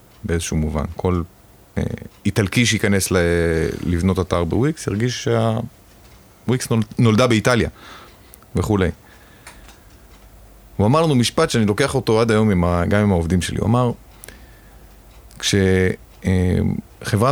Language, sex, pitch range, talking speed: Hebrew, male, 90-115 Hz, 105 wpm